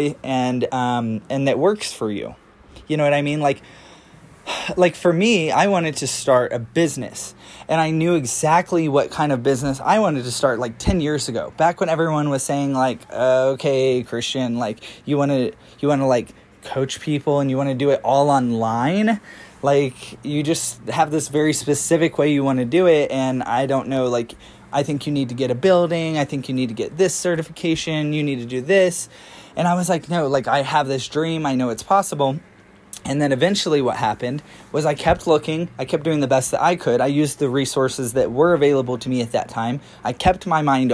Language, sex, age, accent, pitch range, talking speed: English, male, 20-39, American, 130-160 Hz, 215 wpm